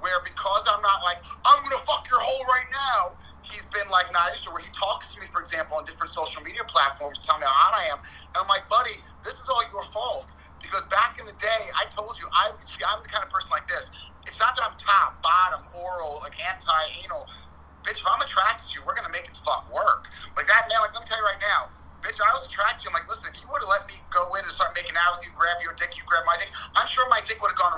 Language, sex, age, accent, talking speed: English, male, 30-49, American, 255 wpm